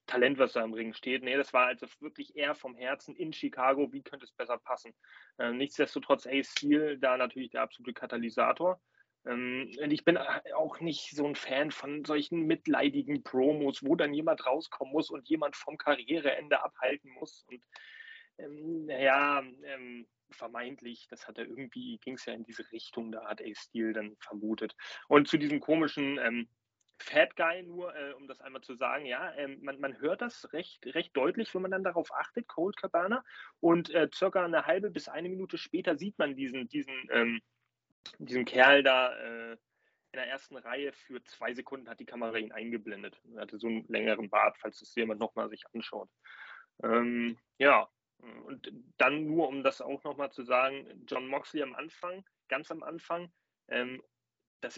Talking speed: 185 wpm